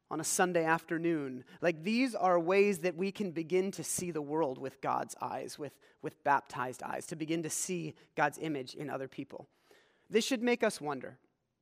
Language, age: English, 30-49